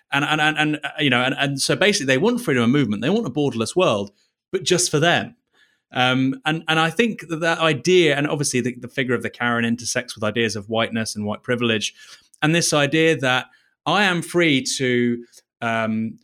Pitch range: 120-155 Hz